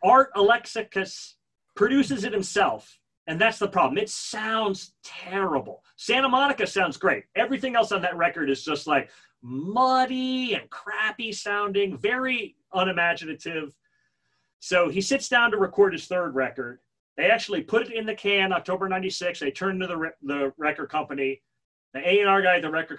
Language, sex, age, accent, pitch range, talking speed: English, male, 30-49, American, 135-205 Hz, 160 wpm